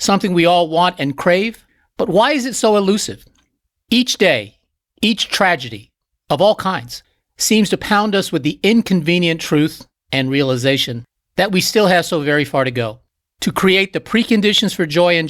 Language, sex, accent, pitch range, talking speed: English, male, American, 145-190 Hz, 175 wpm